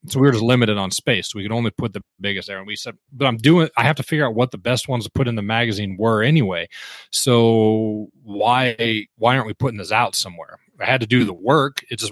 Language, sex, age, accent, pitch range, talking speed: English, male, 30-49, American, 100-125 Hz, 260 wpm